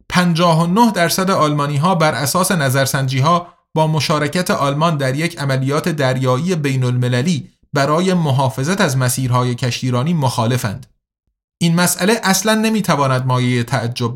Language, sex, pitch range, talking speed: Persian, male, 140-185 Hz, 125 wpm